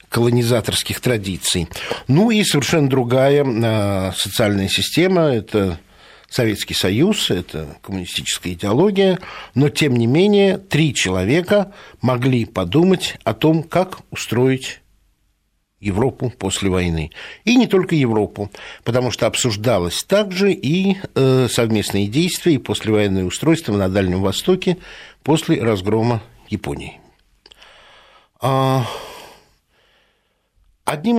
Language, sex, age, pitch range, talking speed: Russian, male, 60-79, 105-160 Hz, 95 wpm